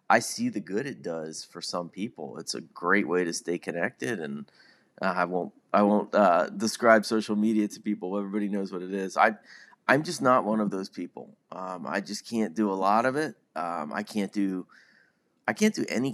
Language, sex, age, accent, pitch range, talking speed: English, male, 30-49, American, 95-130 Hz, 215 wpm